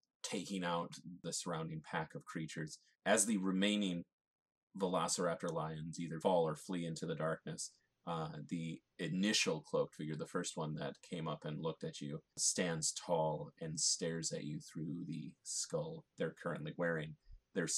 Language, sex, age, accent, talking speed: English, male, 30-49, American, 160 wpm